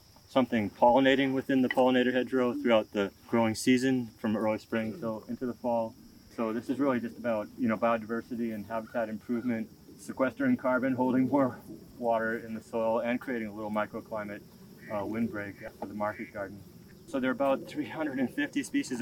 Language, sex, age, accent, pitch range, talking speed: English, male, 30-49, American, 105-130 Hz, 170 wpm